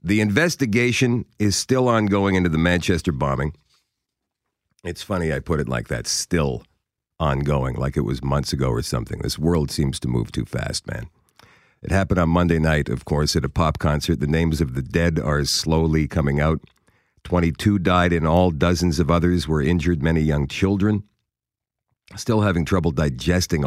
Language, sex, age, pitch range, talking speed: English, male, 50-69, 80-100 Hz, 175 wpm